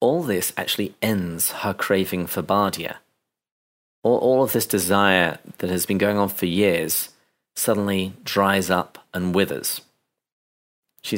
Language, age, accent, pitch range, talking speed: English, 40-59, British, 90-110 Hz, 145 wpm